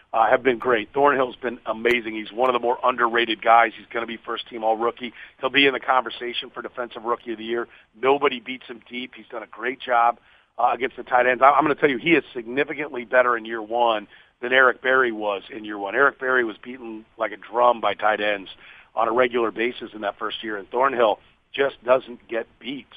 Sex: male